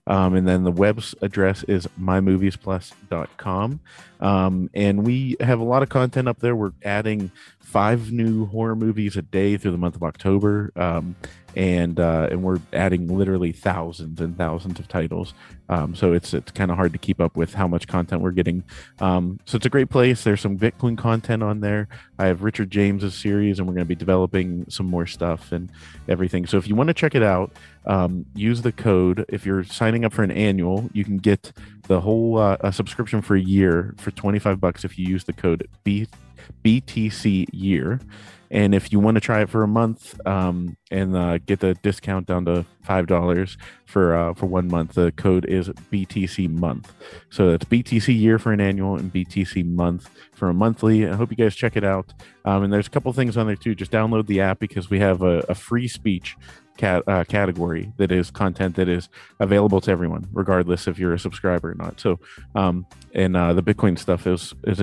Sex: male